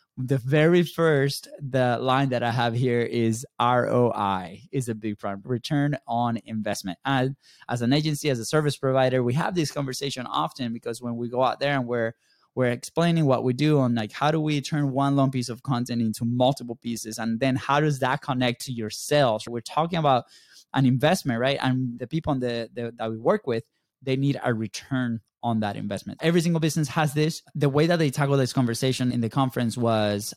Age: 20-39